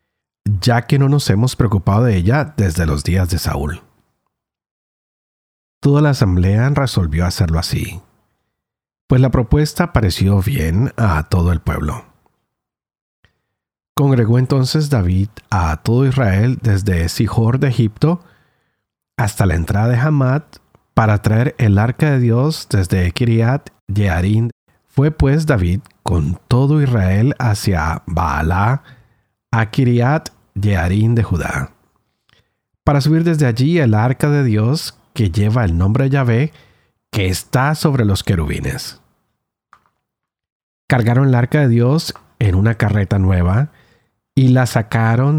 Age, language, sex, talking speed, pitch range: 40-59, Spanish, male, 130 wpm, 100-135 Hz